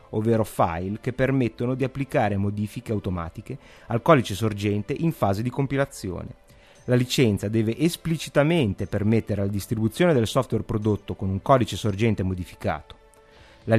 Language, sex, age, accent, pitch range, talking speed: Italian, male, 30-49, native, 105-150 Hz, 135 wpm